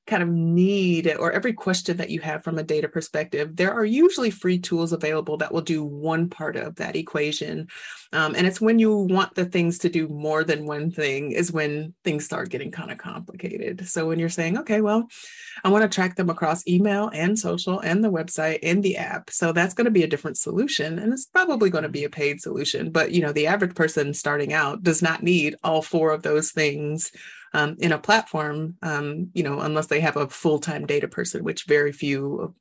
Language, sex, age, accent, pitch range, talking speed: English, female, 30-49, American, 160-210 Hz, 225 wpm